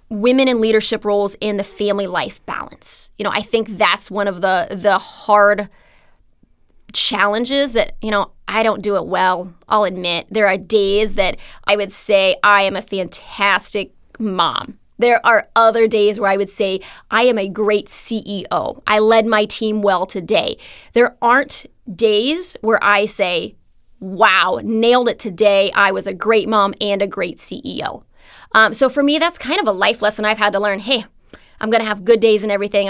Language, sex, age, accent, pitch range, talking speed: English, female, 20-39, American, 200-230 Hz, 190 wpm